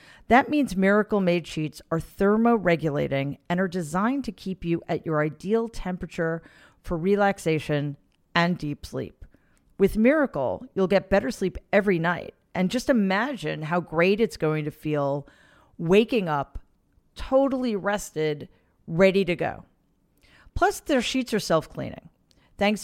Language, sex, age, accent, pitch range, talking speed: English, female, 40-59, American, 170-225 Hz, 135 wpm